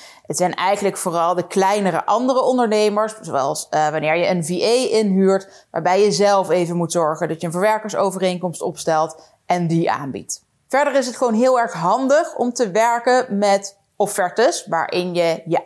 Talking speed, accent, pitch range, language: 170 wpm, Dutch, 170-230 Hz, Dutch